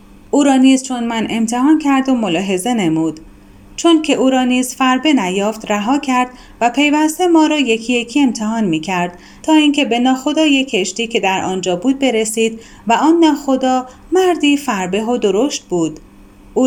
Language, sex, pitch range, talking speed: Persian, female, 210-275 Hz, 165 wpm